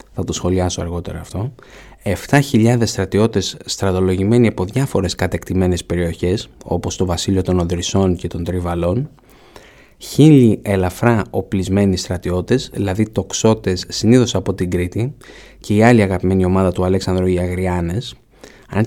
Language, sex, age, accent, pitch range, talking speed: Greek, male, 20-39, native, 95-115 Hz, 125 wpm